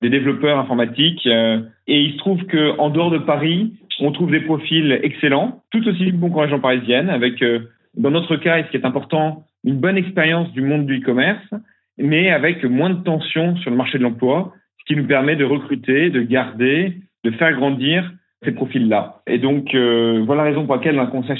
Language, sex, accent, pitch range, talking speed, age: French, male, French, 135-175 Hz, 210 wpm, 40-59